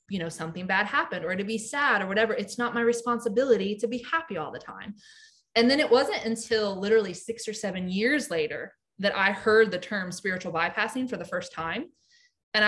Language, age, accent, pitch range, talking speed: English, 20-39, American, 185-235 Hz, 205 wpm